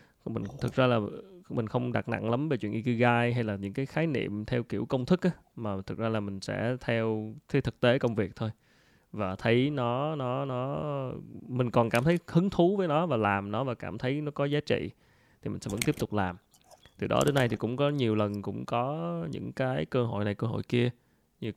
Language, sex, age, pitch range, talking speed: Vietnamese, male, 20-39, 105-130 Hz, 240 wpm